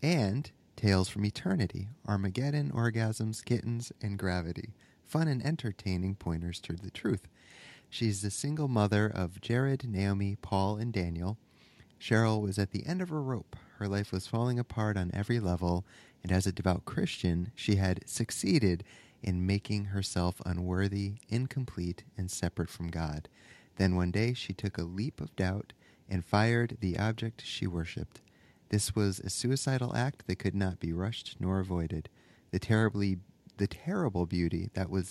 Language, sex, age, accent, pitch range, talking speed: English, male, 30-49, American, 95-115 Hz, 160 wpm